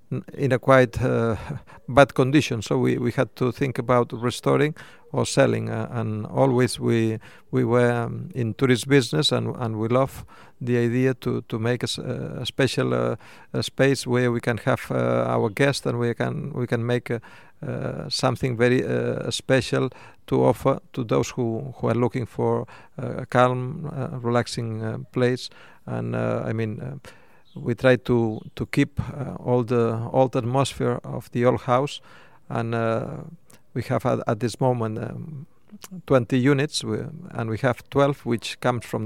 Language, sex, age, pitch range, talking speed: French, male, 50-69, 115-130 Hz, 175 wpm